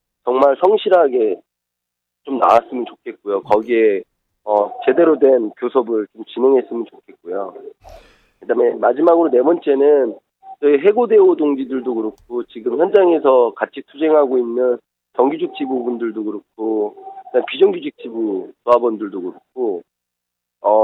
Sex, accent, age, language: male, native, 30-49, Korean